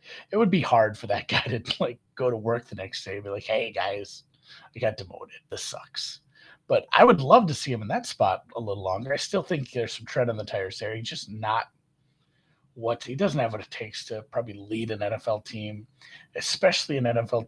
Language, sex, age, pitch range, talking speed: English, male, 30-49, 110-135 Hz, 235 wpm